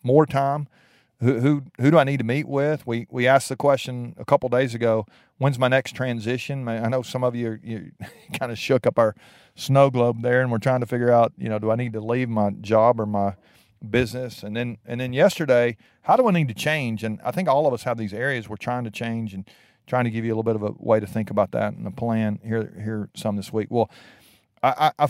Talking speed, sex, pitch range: 255 wpm, male, 110-140 Hz